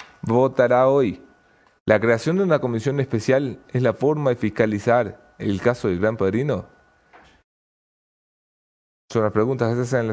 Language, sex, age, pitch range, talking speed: English, male, 30-49, 100-135 Hz, 155 wpm